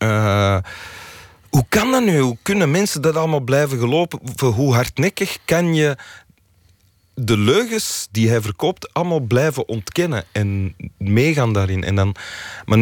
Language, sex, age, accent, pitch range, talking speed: Dutch, male, 30-49, Belgian, 95-130 Hz, 130 wpm